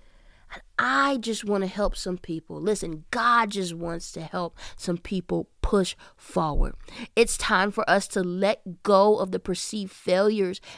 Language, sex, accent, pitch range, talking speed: English, female, American, 175-220 Hz, 155 wpm